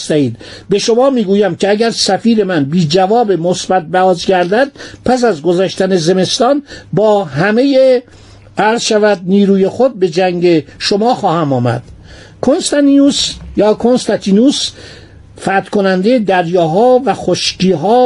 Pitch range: 160-220 Hz